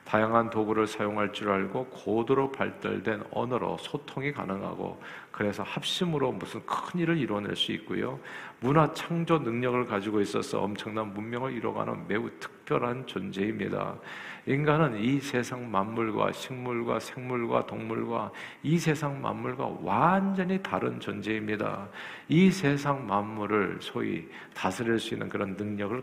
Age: 50-69